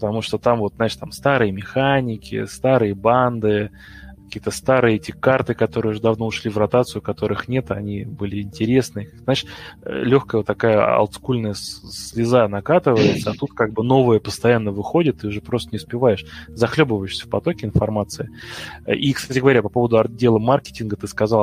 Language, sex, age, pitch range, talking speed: Russian, male, 20-39, 105-120 Hz, 160 wpm